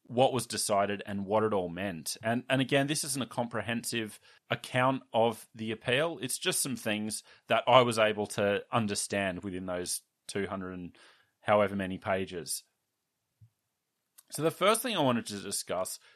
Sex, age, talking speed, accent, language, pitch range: male, 30-49, 165 wpm, Australian, English, 100-125 Hz